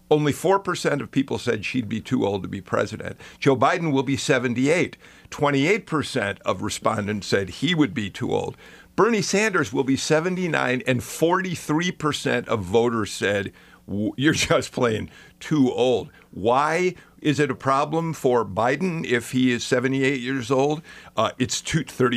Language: English